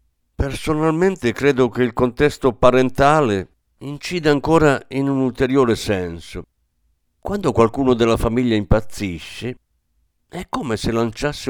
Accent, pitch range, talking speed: native, 90-135 Hz, 110 wpm